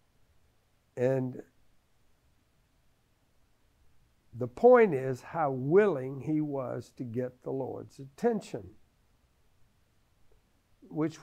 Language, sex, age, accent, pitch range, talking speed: English, male, 60-79, American, 135-210 Hz, 75 wpm